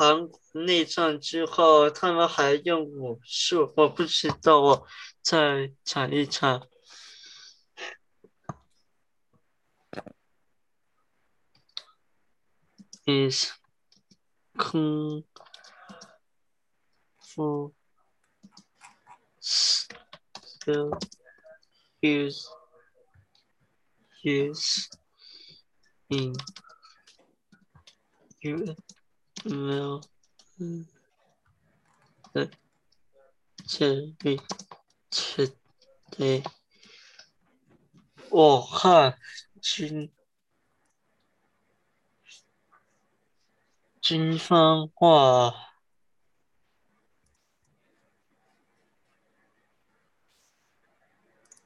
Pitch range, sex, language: 140-170 Hz, male, Chinese